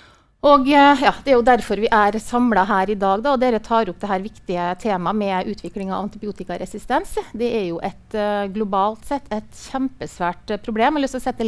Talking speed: 200 wpm